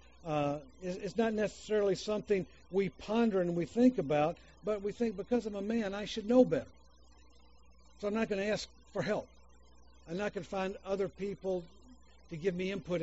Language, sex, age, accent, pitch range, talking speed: English, male, 60-79, American, 160-205 Hz, 190 wpm